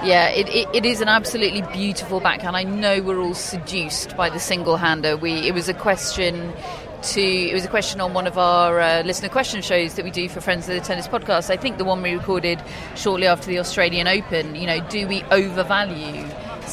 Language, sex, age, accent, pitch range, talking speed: English, female, 30-49, British, 170-210 Hz, 220 wpm